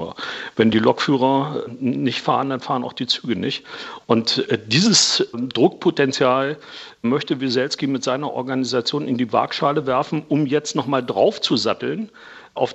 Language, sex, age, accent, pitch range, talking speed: German, male, 50-69, German, 125-150 Hz, 130 wpm